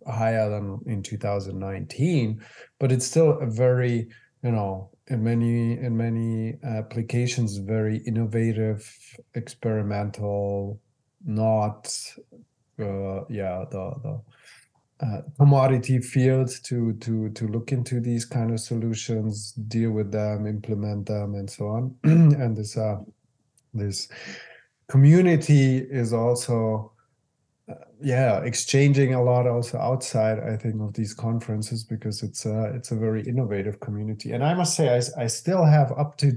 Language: English